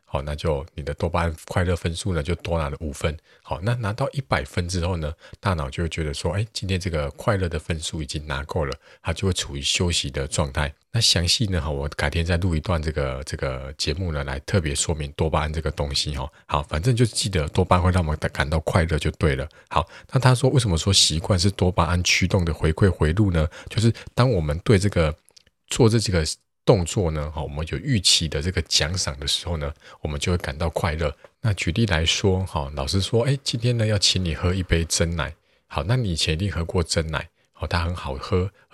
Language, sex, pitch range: Chinese, male, 80-95 Hz